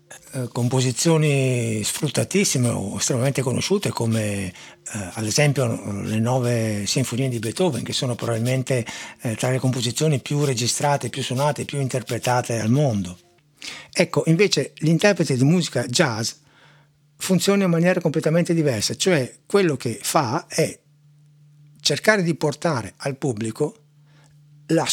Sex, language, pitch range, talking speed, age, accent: male, Italian, 120-160 Hz, 125 wpm, 60-79, native